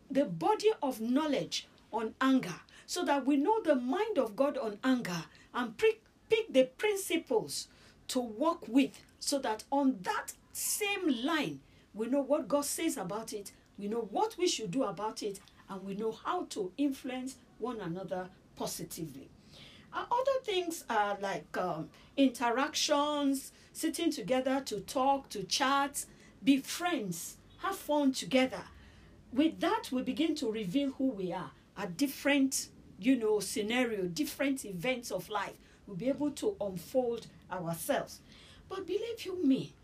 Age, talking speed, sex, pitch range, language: 40-59, 150 wpm, female, 215-305 Hz, English